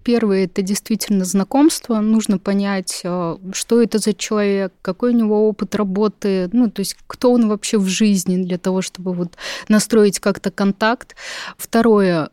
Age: 20-39